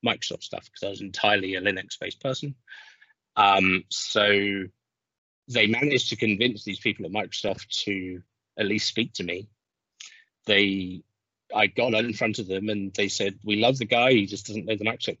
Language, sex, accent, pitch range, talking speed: English, male, British, 100-125 Hz, 180 wpm